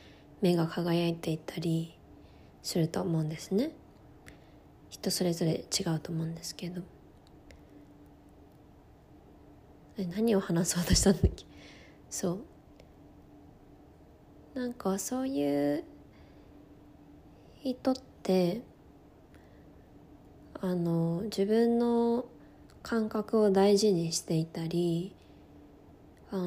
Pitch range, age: 170-215 Hz, 20-39